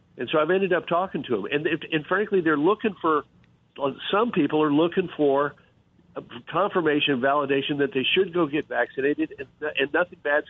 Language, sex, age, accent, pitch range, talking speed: English, male, 50-69, American, 130-170 Hz, 175 wpm